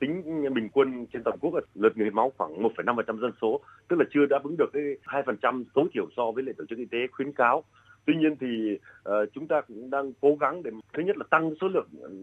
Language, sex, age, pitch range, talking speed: Vietnamese, male, 30-49, 115-150 Hz, 245 wpm